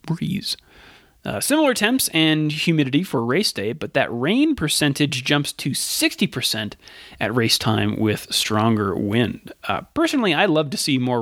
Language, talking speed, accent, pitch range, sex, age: English, 155 wpm, American, 115-155 Hz, male, 30-49